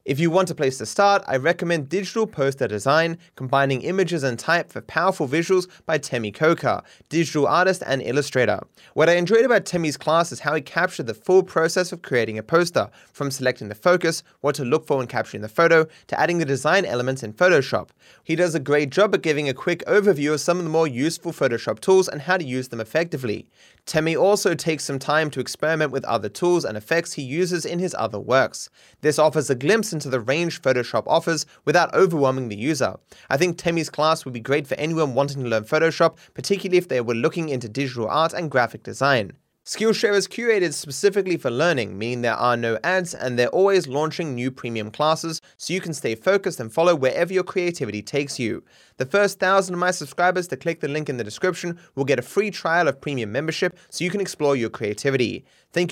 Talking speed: 215 wpm